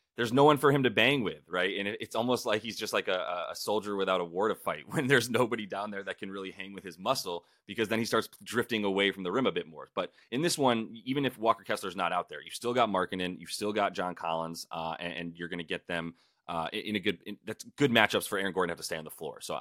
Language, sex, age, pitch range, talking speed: English, male, 30-49, 85-115 Hz, 290 wpm